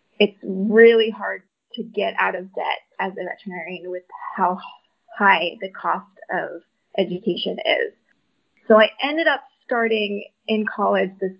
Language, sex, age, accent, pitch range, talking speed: English, female, 20-39, American, 195-235 Hz, 140 wpm